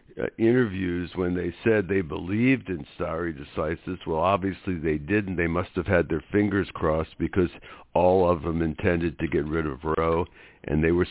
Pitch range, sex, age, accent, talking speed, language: 80-95 Hz, male, 60-79, American, 185 wpm, English